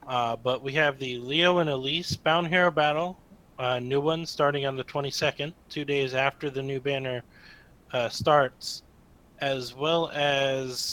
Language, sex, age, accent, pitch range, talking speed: English, male, 30-49, American, 120-150 Hz, 160 wpm